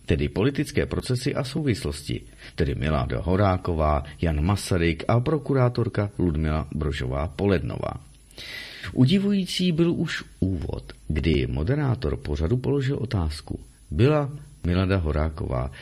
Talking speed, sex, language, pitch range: 100 wpm, male, Czech, 75-125 Hz